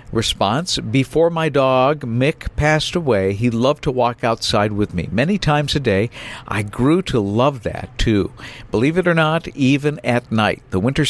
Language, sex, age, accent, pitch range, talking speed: English, male, 50-69, American, 110-145 Hz, 180 wpm